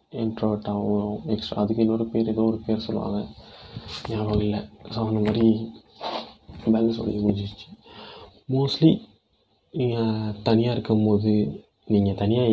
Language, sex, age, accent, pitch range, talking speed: Tamil, male, 20-39, native, 100-110 Hz, 110 wpm